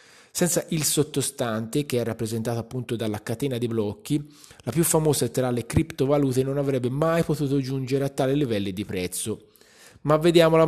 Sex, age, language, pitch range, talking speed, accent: male, 20-39, Italian, 115-150 Hz, 165 wpm, native